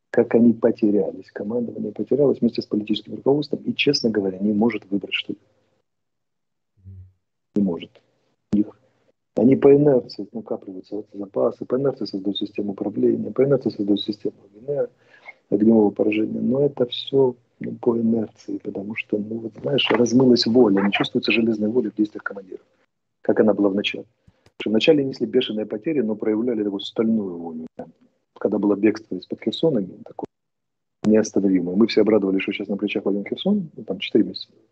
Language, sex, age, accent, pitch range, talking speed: Russian, male, 40-59, native, 100-120 Hz, 160 wpm